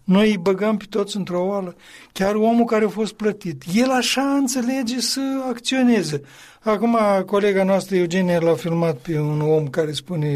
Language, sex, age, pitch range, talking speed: Romanian, male, 60-79, 170-205 Hz, 170 wpm